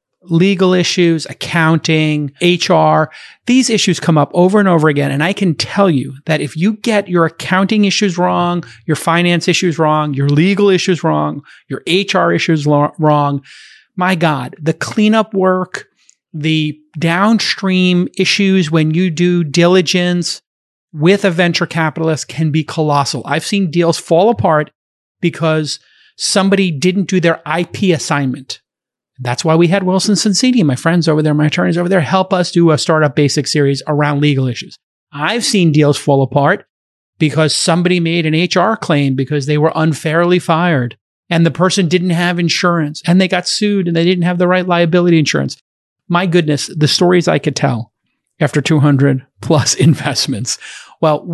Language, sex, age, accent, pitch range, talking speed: English, male, 30-49, American, 150-185 Hz, 160 wpm